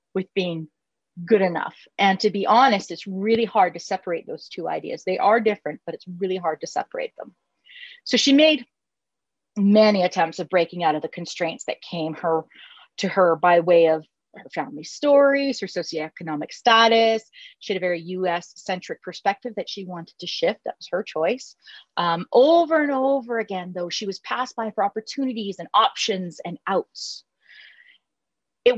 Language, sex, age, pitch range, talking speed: English, female, 30-49, 175-245 Hz, 175 wpm